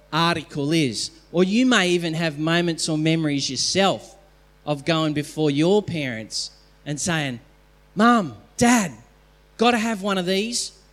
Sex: male